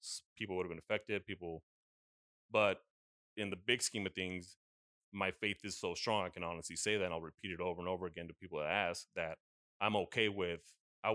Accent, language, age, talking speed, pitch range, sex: American, English, 30-49, 215 wpm, 85-105 Hz, male